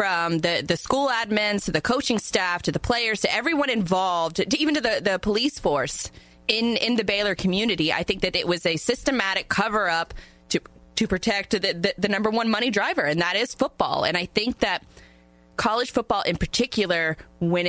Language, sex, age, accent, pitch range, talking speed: English, female, 20-39, American, 165-205 Hz, 195 wpm